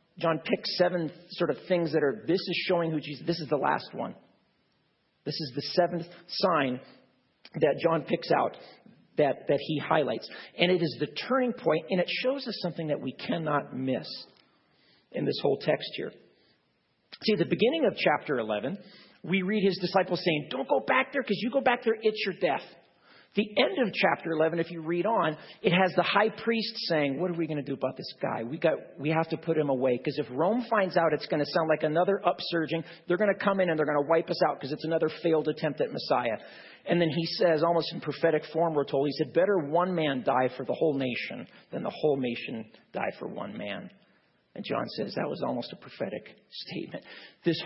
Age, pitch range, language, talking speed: 40-59, 150-190 Hz, English, 220 wpm